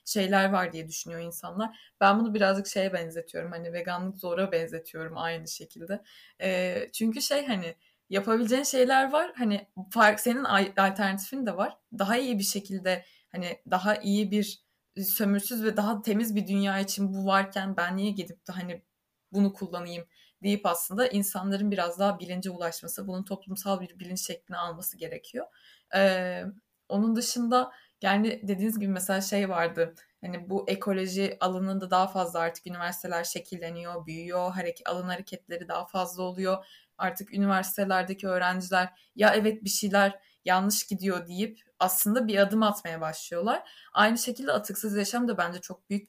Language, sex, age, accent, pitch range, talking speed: Turkish, female, 20-39, native, 180-210 Hz, 150 wpm